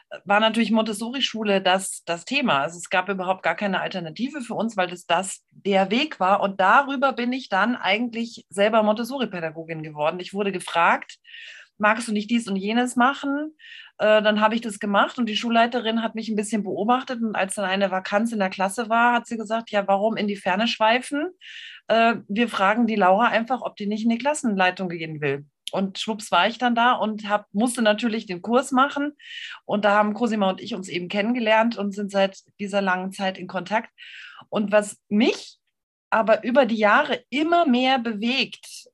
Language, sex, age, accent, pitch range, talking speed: German, female, 40-59, German, 195-240 Hz, 190 wpm